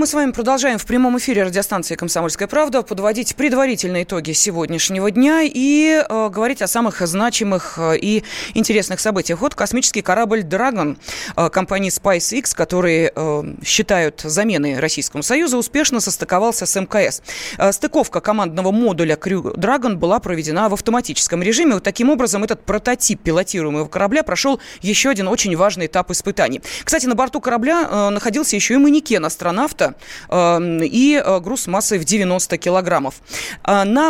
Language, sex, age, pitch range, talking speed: Russian, female, 20-39, 180-245 Hz, 150 wpm